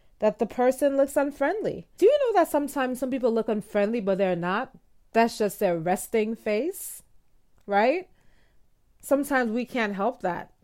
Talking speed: 160 wpm